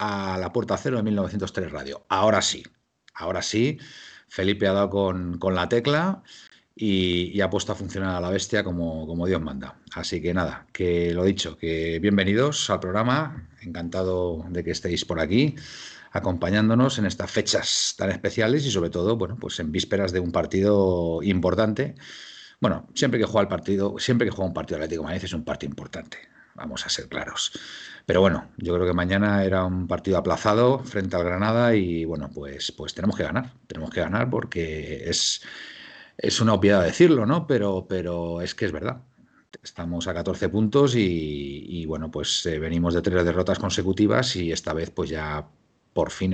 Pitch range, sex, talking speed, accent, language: 85-105 Hz, male, 185 wpm, Spanish, Spanish